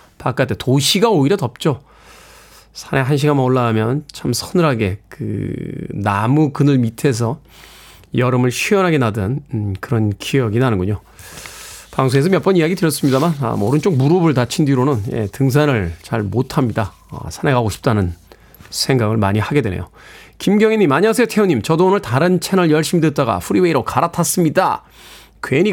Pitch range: 120-175 Hz